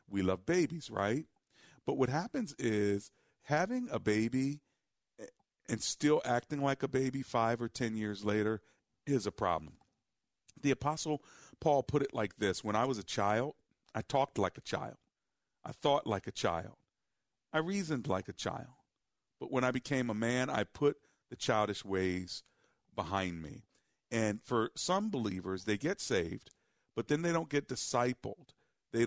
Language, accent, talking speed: English, American, 165 wpm